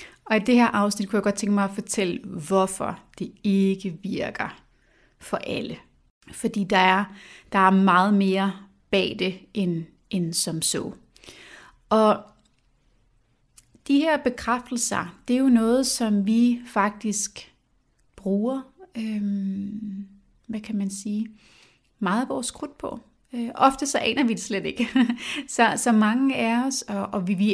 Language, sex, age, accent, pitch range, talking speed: Danish, female, 30-49, native, 195-230 Hz, 150 wpm